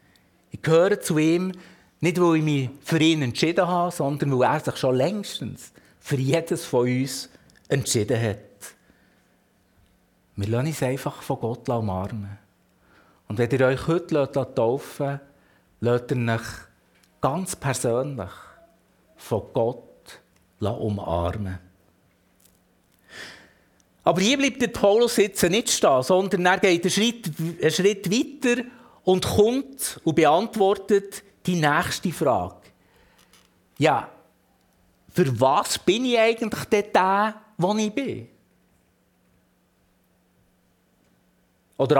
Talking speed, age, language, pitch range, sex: 115 wpm, 50-69, German, 130-215 Hz, male